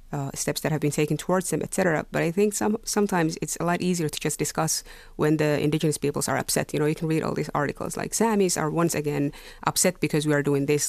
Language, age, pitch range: Finnish, 30-49, 150-180 Hz